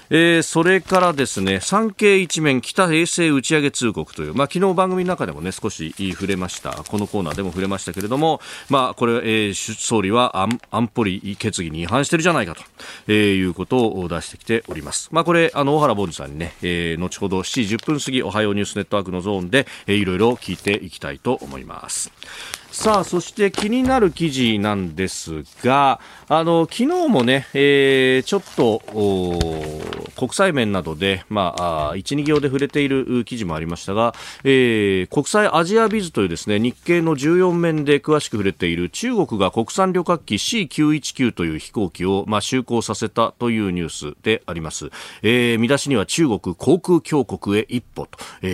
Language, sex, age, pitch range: Japanese, male, 40-59, 95-145 Hz